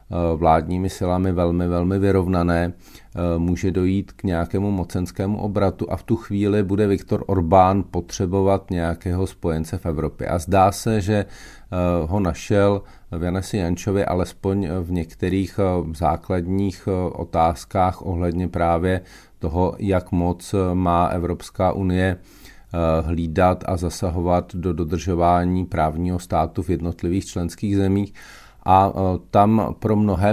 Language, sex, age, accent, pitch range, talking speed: Czech, male, 40-59, native, 85-100 Hz, 115 wpm